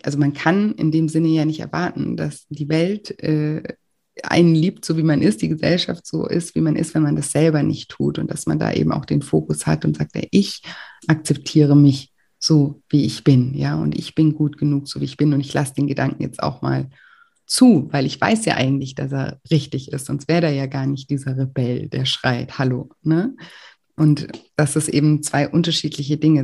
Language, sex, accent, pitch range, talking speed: German, female, German, 140-165 Hz, 220 wpm